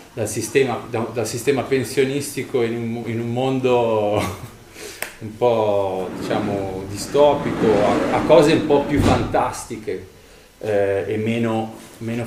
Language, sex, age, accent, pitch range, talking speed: Italian, male, 30-49, native, 95-120 Hz, 110 wpm